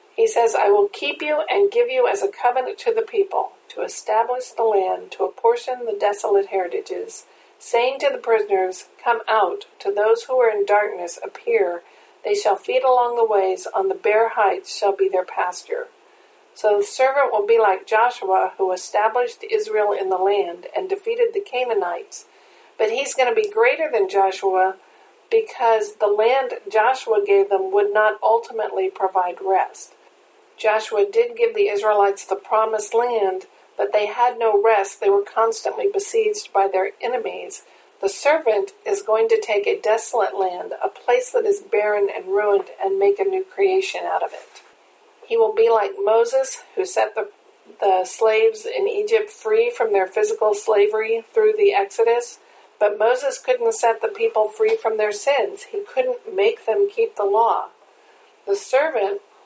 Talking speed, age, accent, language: 170 wpm, 50-69, American, English